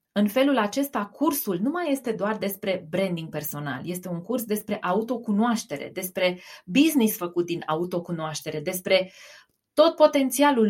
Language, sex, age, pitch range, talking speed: Romanian, female, 20-39, 175-240 Hz, 135 wpm